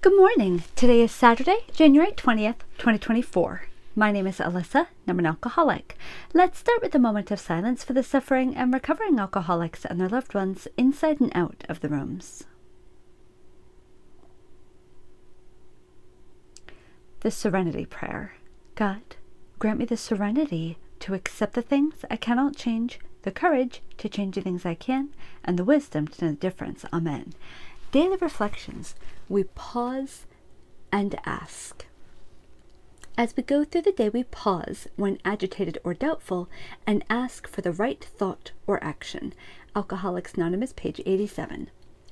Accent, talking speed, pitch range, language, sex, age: American, 140 wpm, 185-265 Hz, English, female, 40-59